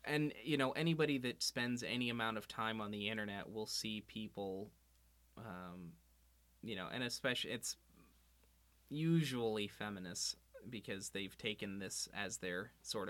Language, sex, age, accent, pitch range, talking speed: English, male, 20-39, American, 90-120 Hz, 140 wpm